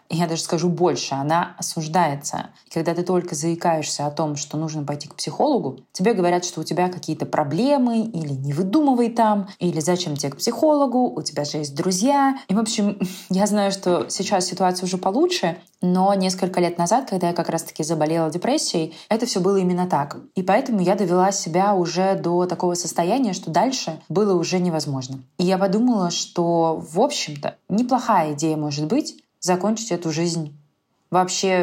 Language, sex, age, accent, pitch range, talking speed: Russian, female, 20-39, native, 155-190 Hz, 175 wpm